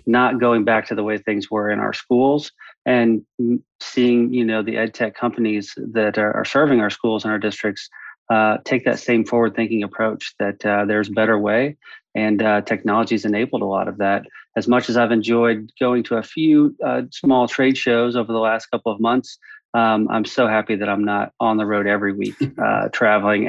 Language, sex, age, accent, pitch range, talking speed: English, male, 30-49, American, 105-120 Hz, 205 wpm